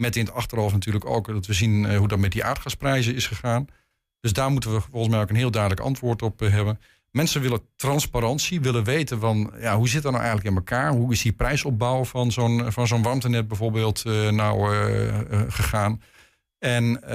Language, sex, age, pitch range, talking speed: Dutch, male, 50-69, 105-125 Hz, 205 wpm